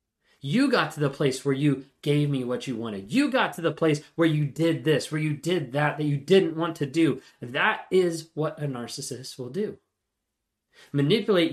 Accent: American